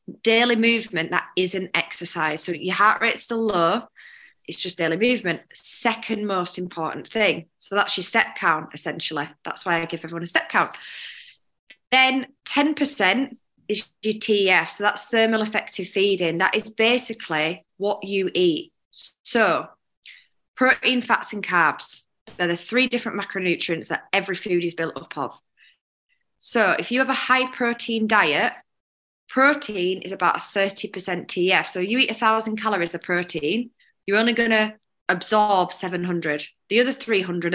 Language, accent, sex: English, British, female